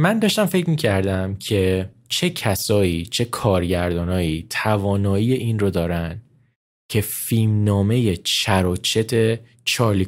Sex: male